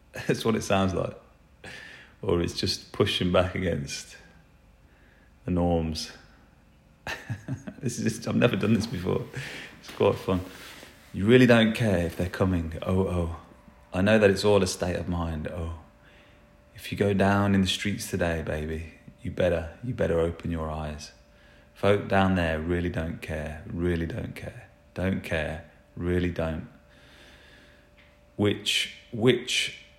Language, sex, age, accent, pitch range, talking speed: English, male, 30-49, British, 80-95 Hz, 150 wpm